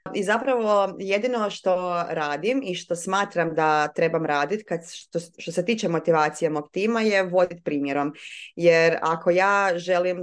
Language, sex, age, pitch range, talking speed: Croatian, female, 20-39, 165-200 Hz, 145 wpm